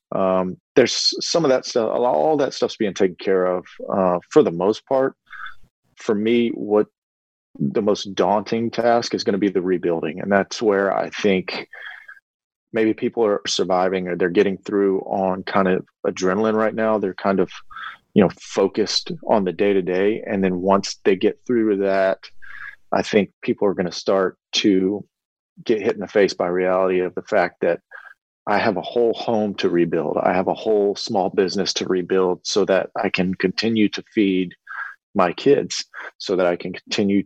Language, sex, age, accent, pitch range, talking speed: English, male, 40-59, American, 95-110 Hz, 185 wpm